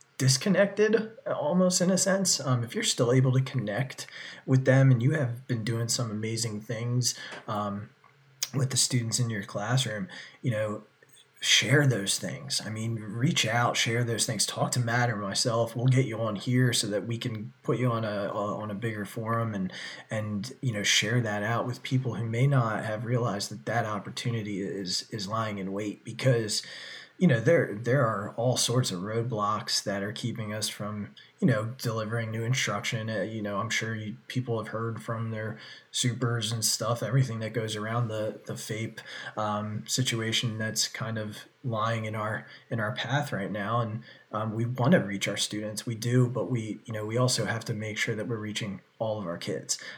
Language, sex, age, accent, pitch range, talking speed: English, male, 20-39, American, 105-125 Hz, 200 wpm